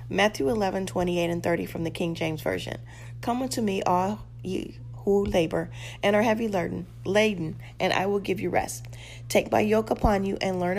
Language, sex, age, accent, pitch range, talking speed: English, female, 40-59, American, 120-190 Hz, 195 wpm